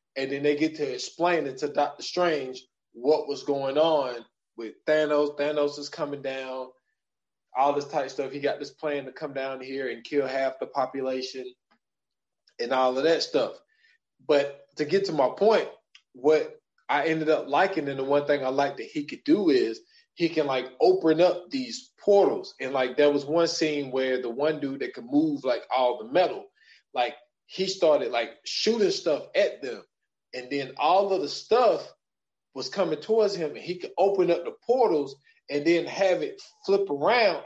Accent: American